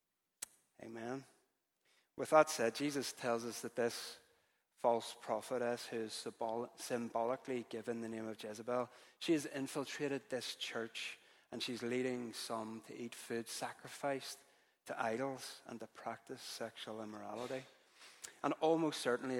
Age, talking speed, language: 30-49, 125 wpm, English